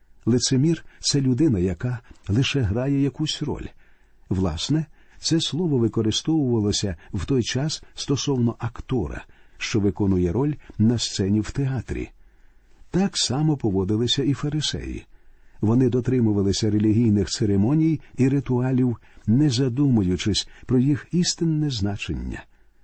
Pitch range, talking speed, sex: 105-140 Hz, 110 wpm, male